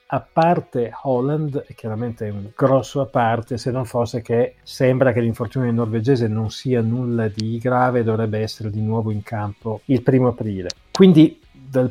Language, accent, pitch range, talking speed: Italian, native, 115-145 Hz, 170 wpm